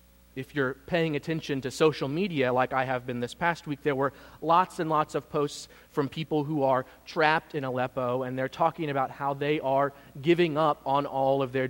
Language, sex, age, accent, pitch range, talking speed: English, male, 30-49, American, 115-145 Hz, 210 wpm